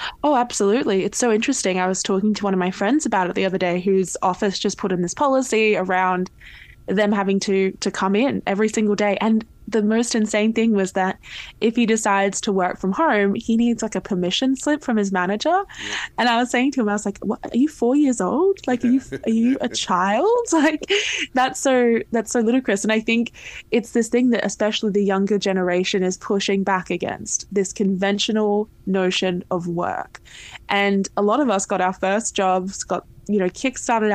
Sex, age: female, 10-29